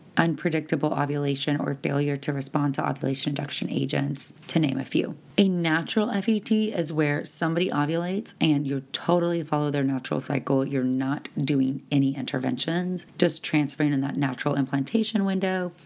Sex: female